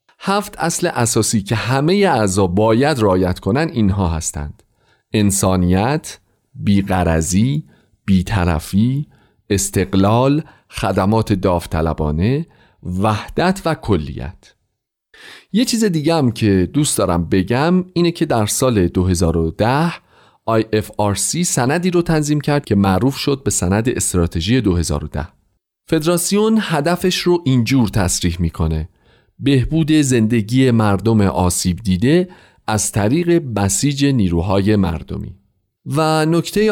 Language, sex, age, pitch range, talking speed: Persian, male, 40-59, 95-145 Hz, 100 wpm